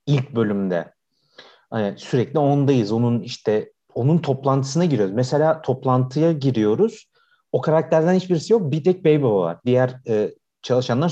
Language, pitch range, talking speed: Turkish, 115-160 Hz, 130 wpm